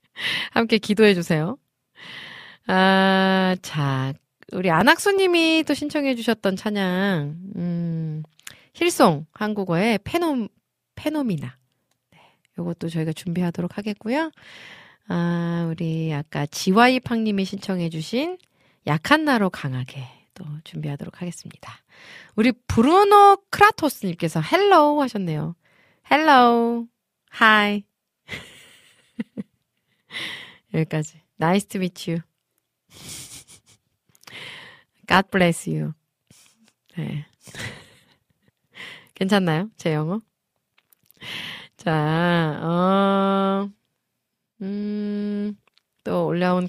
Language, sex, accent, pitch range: Korean, female, native, 165-230 Hz